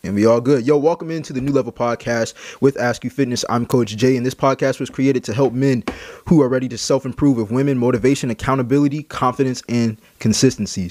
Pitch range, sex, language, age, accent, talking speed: 120-145 Hz, male, English, 20-39, American, 210 wpm